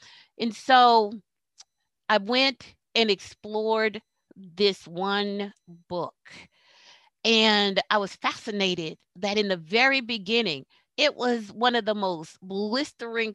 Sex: female